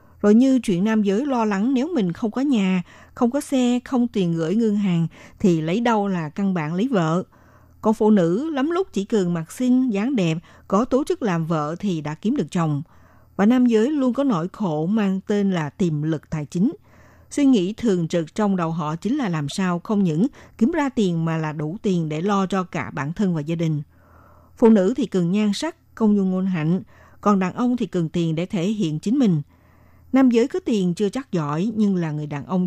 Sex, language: female, Vietnamese